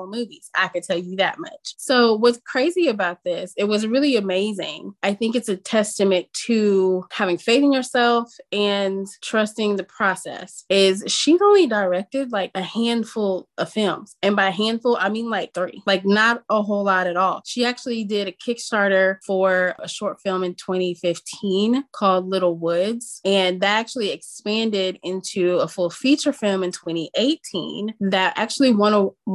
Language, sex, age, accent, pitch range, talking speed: English, female, 20-39, American, 190-230 Hz, 160 wpm